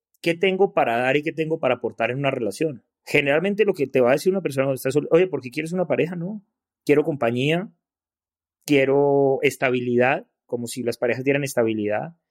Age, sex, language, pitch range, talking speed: 30-49, male, Spanish, 130-175 Hz, 200 wpm